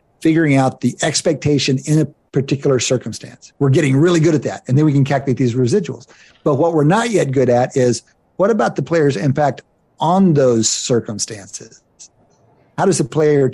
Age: 50-69